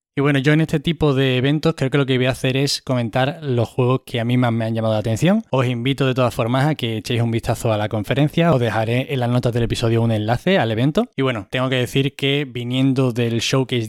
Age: 20-39